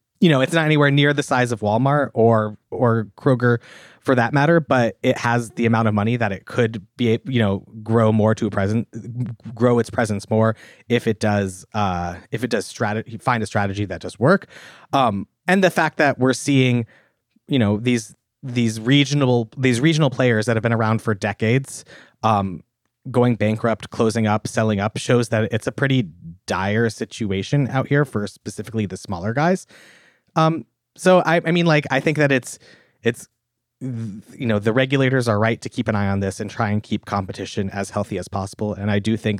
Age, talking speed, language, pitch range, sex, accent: 30-49, 200 wpm, English, 105-130 Hz, male, American